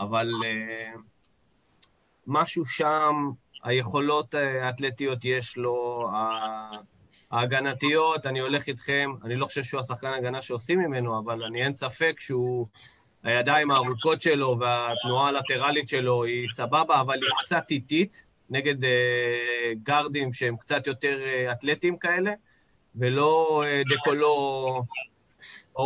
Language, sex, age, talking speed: Hebrew, male, 30-49, 115 wpm